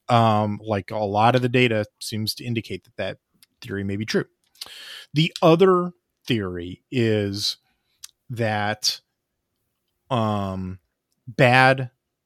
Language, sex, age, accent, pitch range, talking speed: English, male, 30-49, American, 110-135 Hz, 115 wpm